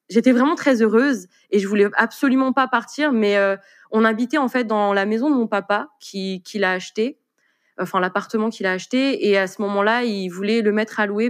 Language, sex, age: French, female, 20-39